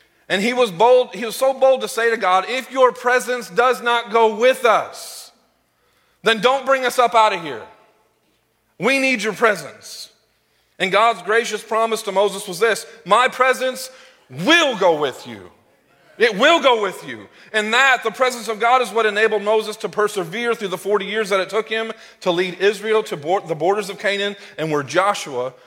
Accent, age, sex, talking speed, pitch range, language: American, 40-59, male, 190 wpm, 165-225 Hz, English